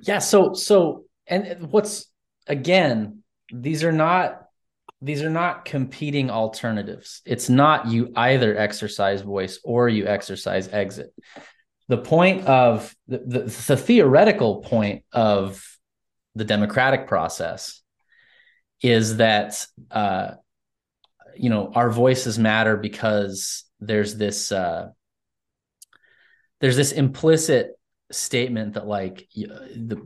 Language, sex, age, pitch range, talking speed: English, male, 30-49, 105-140 Hz, 110 wpm